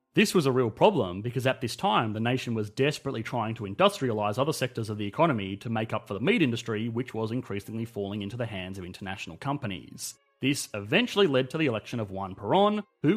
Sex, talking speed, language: male, 220 wpm, English